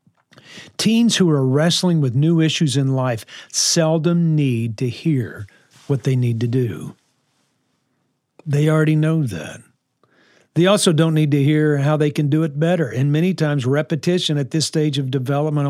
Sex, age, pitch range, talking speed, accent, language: male, 50-69, 135-175 Hz, 165 wpm, American, English